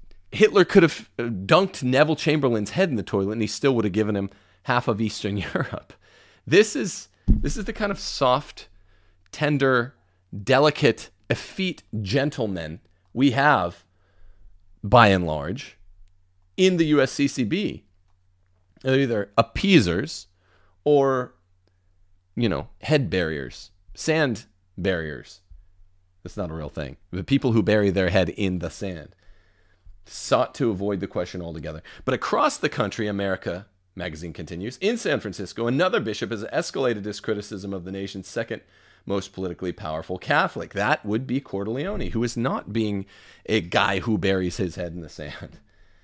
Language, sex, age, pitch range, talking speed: English, male, 40-59, 90-125 Hz, 145 wpm